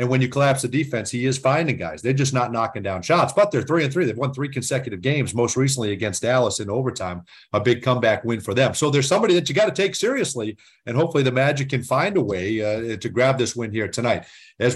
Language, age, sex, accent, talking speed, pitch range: English, 40-59, male, American, 255 wpm, 120-160 Hz